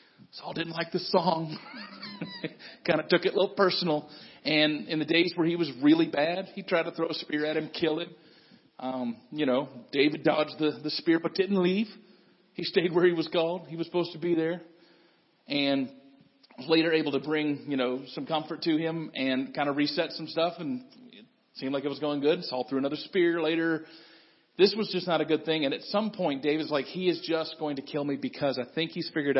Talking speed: 225 wpm